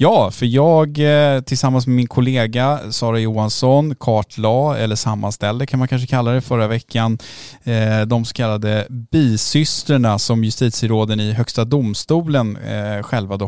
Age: 10-29